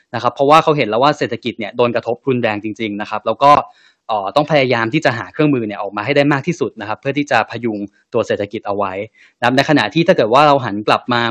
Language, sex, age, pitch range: Thai, male, 10-29, 115-145 Hz